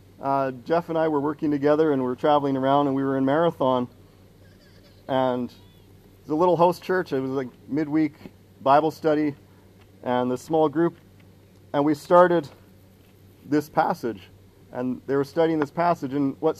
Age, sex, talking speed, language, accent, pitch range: 40-59, male, 170 wpm, English, American, 95-155 Hz